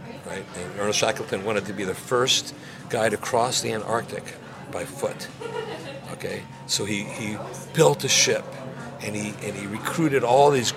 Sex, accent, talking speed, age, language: male, American, 165 wpm, 50-69, English